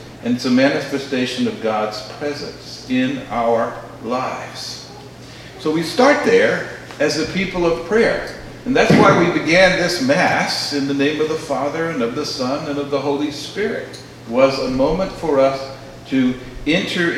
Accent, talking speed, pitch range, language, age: American, 170 wpm, 135-185 Hz, English, 60-79